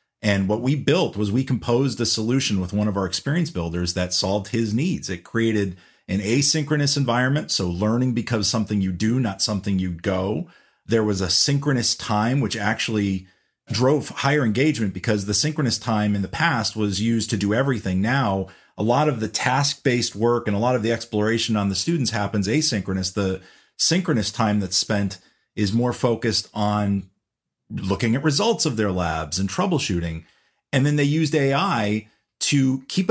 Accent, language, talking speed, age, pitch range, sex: American, English, 180 wpm, 40-59, 105-145 Hz, male